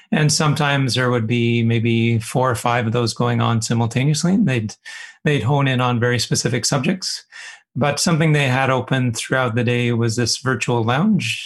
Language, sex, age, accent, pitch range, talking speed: English, male, 30-49, American, 120-145 Hz, 180 wpm